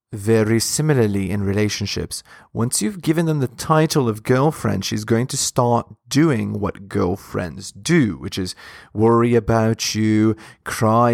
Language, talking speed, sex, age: English, 140 wpm, male, 30-49